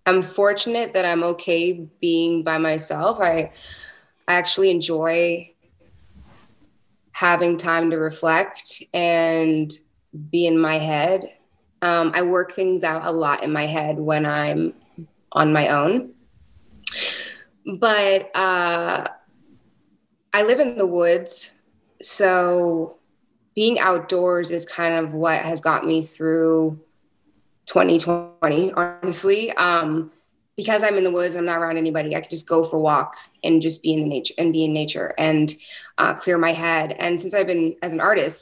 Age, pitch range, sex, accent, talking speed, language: 20-39, 160-180 Hz, female, American, 150 wpm, English